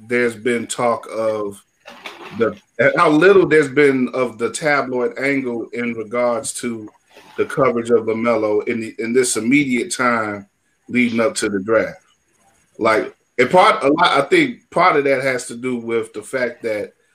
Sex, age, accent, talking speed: male, 30-49, American, 170 wpm